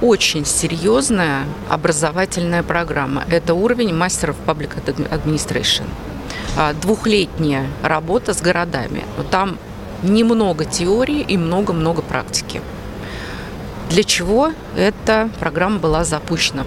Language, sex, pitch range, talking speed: Russian, female, 155-195 Hz, 95 wpm